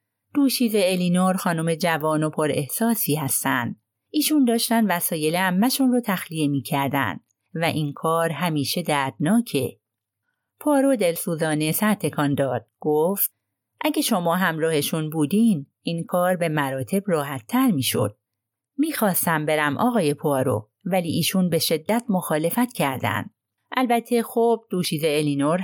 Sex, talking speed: female, 115 wpm